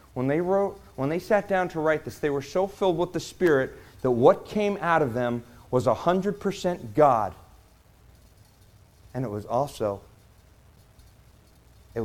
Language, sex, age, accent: Japanese, male, 40-59, American